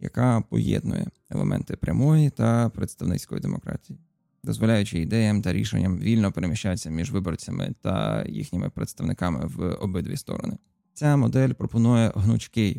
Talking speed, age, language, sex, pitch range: 115 wpm, 20-39, Ukrainian, male, 100-135 Hz